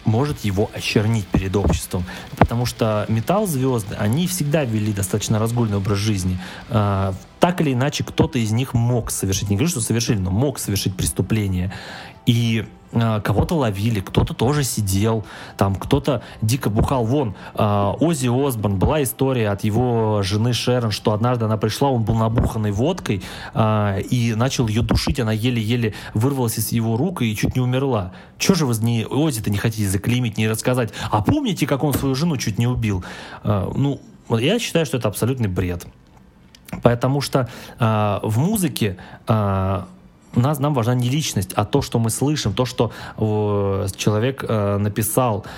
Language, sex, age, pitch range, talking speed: Russian, male, 20-39, 105-130 Hz, 155 wpm